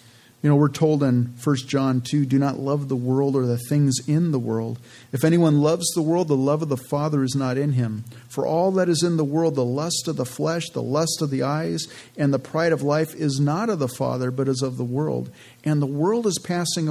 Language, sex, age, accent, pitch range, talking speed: English, male, 50-69, American, 135-165 Hz, 250 wpm